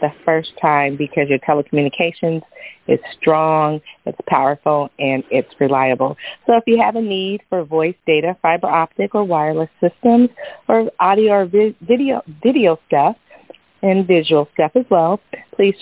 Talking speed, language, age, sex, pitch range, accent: 150 wpm, English, 40-59, female, 160-210 Hz, American